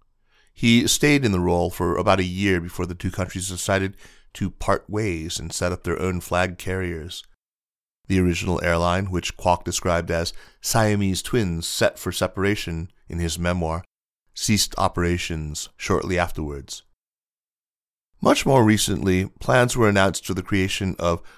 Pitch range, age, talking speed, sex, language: 85-95 Hz, 30-49, 150 wpm, male, English